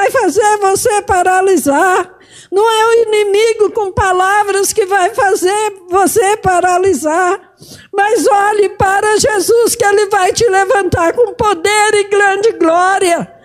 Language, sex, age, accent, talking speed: Portuguese, female, 50-69, Brazilian, 125 wpm